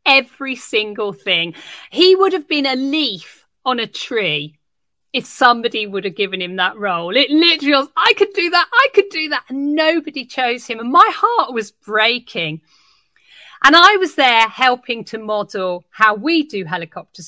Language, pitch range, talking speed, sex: English, 190-275 Hz, 175 wpm, female